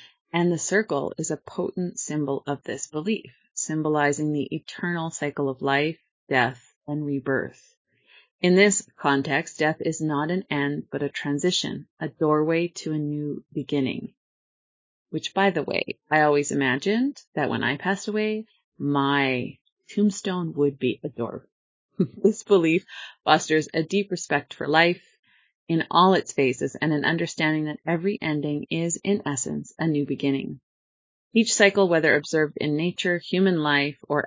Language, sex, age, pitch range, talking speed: English, female, 30-49, 145-180 Hz, 150 wpm